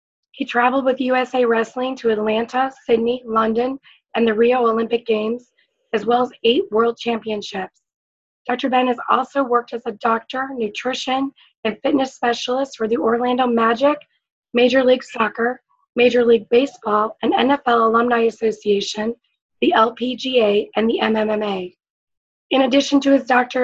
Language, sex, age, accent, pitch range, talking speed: English, female, 20-39, American, 225-255 Hz, 140 wpm